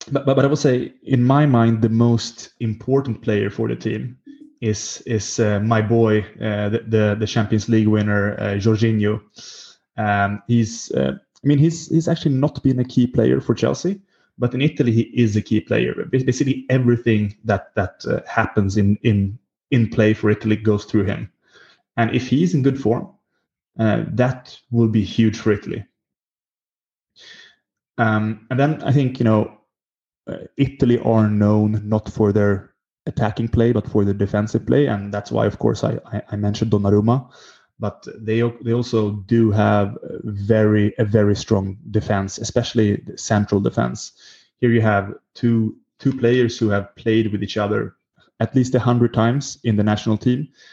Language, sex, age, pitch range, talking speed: English, male, 20-39, 105-120 Hz, 175 wpm